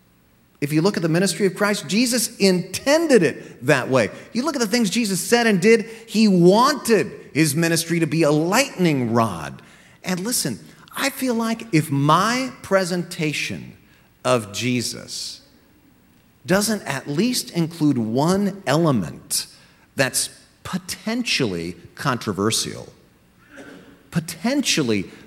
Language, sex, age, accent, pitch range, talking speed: English, male, 40-59, American, 115-190 Hz, 120 wpm